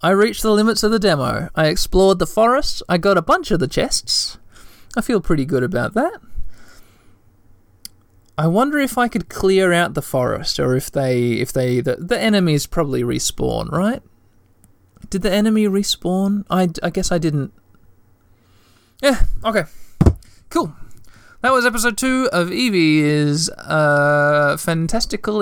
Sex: male